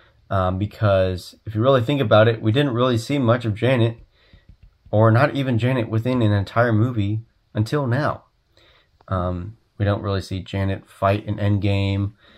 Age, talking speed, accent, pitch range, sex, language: 30-49, 165 wpm, American, 100-120 Hz, male, English